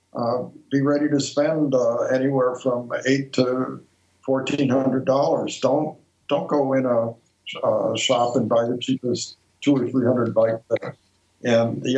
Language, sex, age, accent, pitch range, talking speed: English, male, 60-79, American, 115-140 Hz, 140 wpm